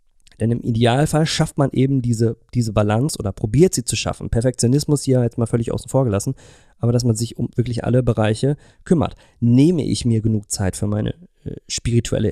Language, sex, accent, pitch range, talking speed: German, male, German, 110-135 Hz, 195 wpm